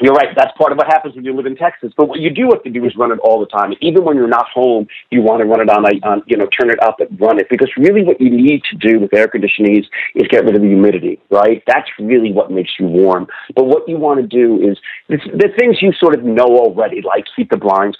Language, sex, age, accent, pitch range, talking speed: English, male, 40-59, American, 105-150 Hz, 295 wpm